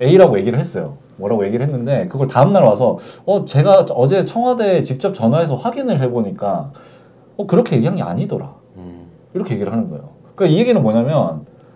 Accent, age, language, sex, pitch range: native, 40-59, Korean, male, 125-185 Hz